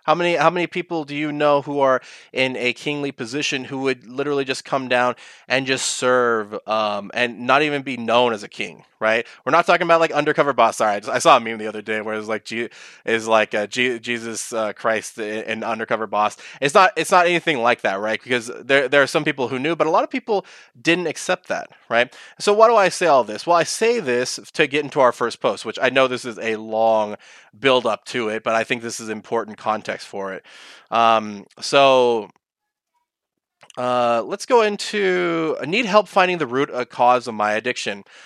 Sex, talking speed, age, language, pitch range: male, 225 wpm, 20-39, English, 115-150 Hz